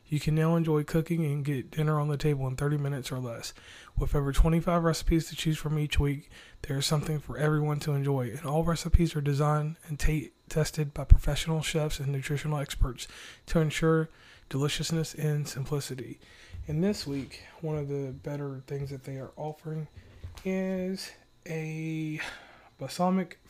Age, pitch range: 20-39, 140-165 Hz